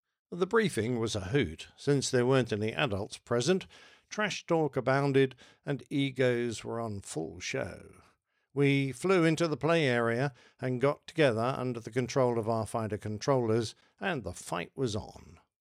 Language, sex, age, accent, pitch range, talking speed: English, male, 60-79, British, 115-140 Hz, 160 wpm